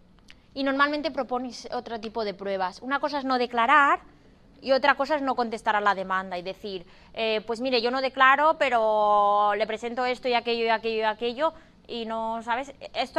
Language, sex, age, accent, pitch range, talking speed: Spanish, female, 20-39, Spanish, 230-290 Hz, 195 wpm